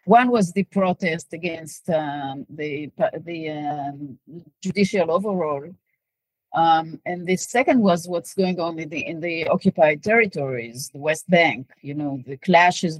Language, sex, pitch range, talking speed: English, female, 155-195 Hz, 150 wpm